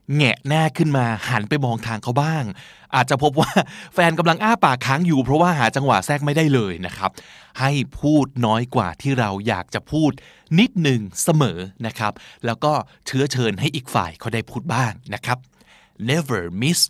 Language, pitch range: Thai, 120-165 Hz